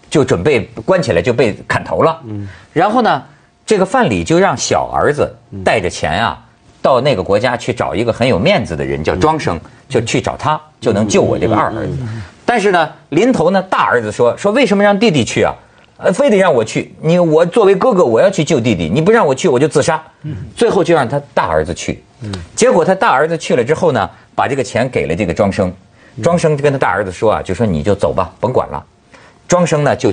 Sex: male